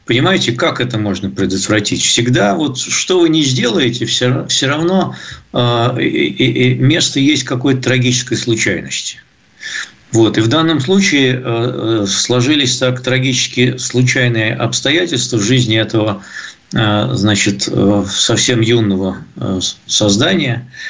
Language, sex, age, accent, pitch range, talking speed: Russian, male, 50-69, native, 110-130 Hz, 120 wpm